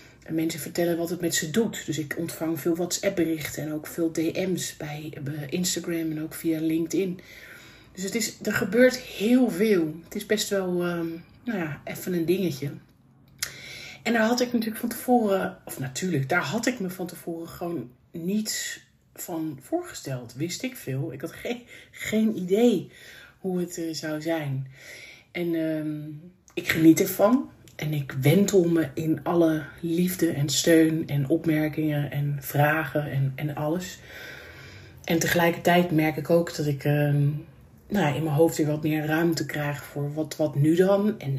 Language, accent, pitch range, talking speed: Dutch, Dutch, 150-180 Hz, 170 wpm